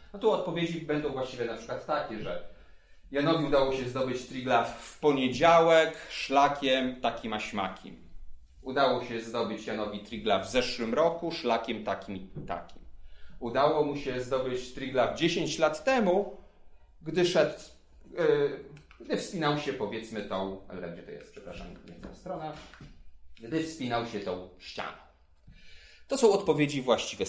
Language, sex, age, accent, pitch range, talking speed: Polish, male, 30-49, native, 105-160 Hz, 140 wpm